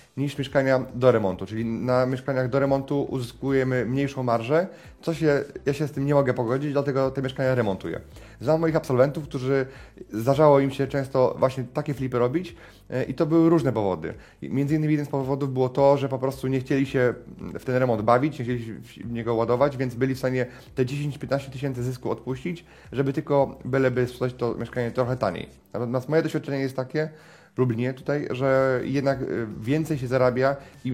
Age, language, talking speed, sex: 30-49, Polish, 185 wpm, male